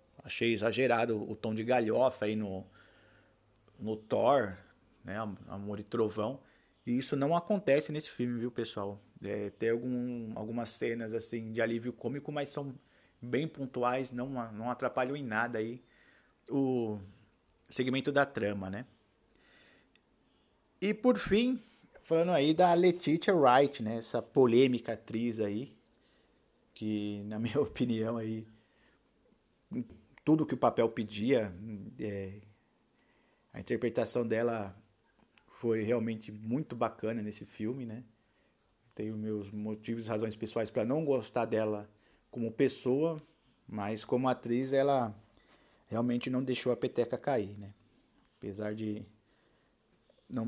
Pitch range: 105-125 Hz